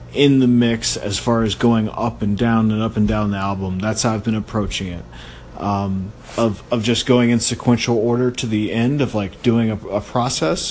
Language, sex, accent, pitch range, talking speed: English, male, American, 105-125 Hz, 220 wpm